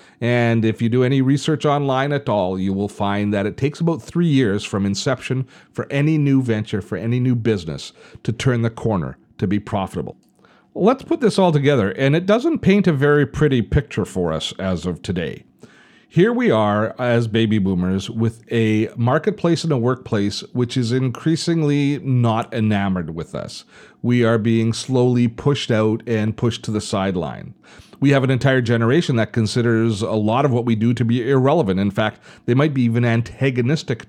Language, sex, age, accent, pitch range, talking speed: English, male, 40-59, American, 105-130 Hz, 185 wpm